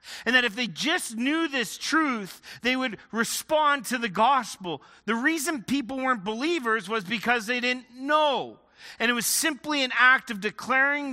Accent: American